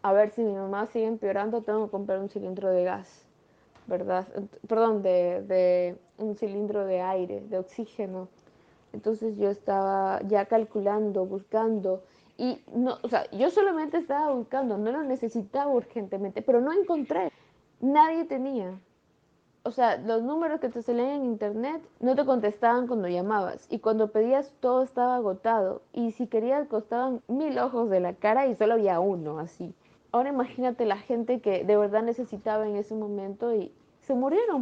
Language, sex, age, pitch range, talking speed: Spanish, female, 20-39, 200-250 Hz, 165 wpm